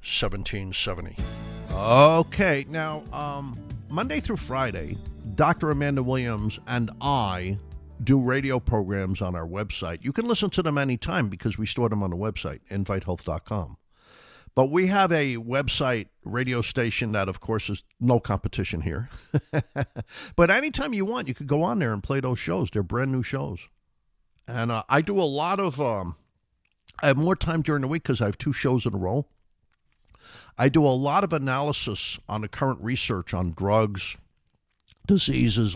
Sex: male